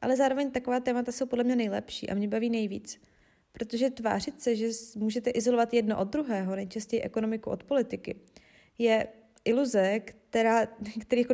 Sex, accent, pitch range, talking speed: female, native, 215-250 Hz, 150 wpm